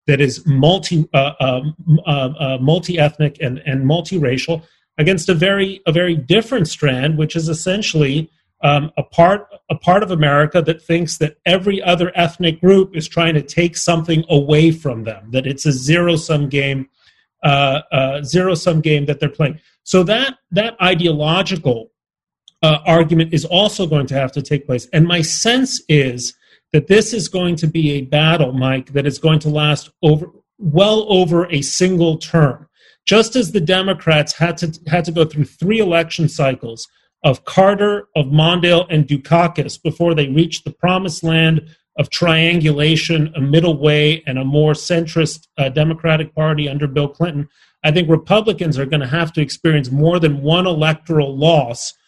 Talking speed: 170 wpm